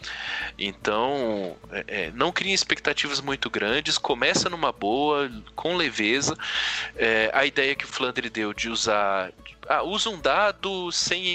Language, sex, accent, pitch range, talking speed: Portuguese, male, Brazilian, 110-160 Hz, 125 wpm